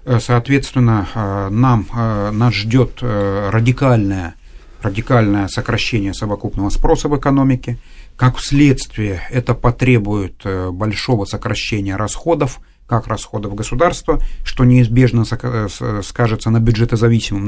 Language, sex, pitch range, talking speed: Russian, male, 105-125 Hz, 90 wpm